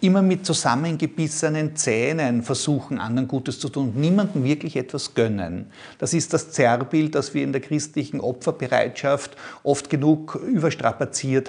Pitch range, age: 125-160 Hz, 50-69